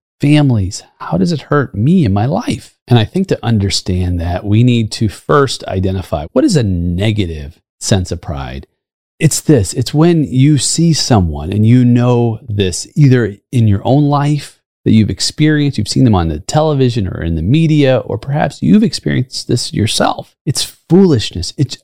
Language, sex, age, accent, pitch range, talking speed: English, male, 30-49, American, 105-150 Hz, 180 wpm